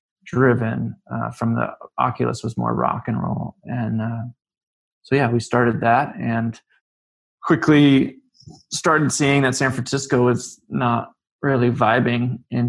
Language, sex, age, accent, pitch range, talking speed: English, male, 20-39, American, 120-140 Hz, 135 wpm